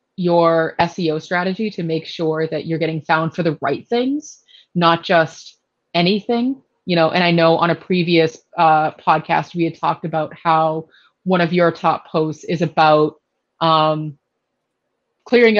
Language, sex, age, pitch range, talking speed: English, female, 30-49, 160-185 Hz, 160 wpm